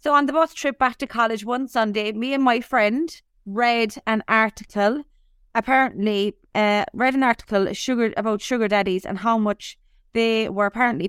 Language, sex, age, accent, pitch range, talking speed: English, female, 20-39, Irish, 200-250 Hz, 170 wpm